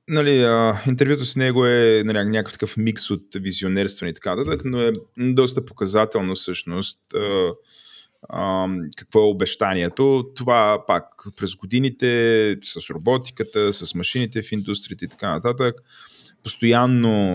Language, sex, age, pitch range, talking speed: Bulgarian, male, 30-49, 85-115 Hz, 130 wpm